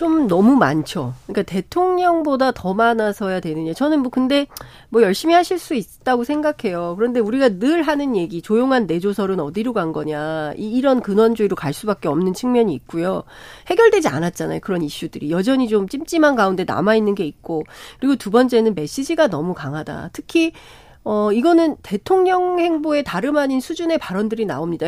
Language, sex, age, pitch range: Korean, female, 40-59, 195-315 Hz